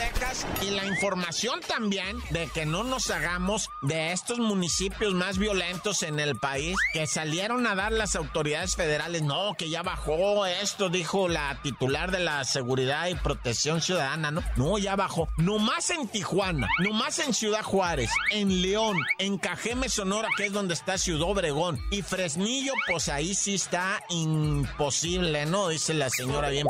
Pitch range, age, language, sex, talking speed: 155-200 Hz, 50-69, Spanish, male, 165 wpm